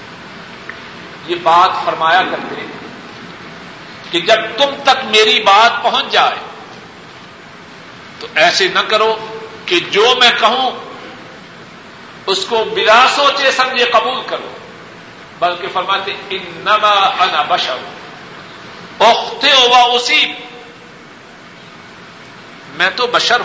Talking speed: 95 wpm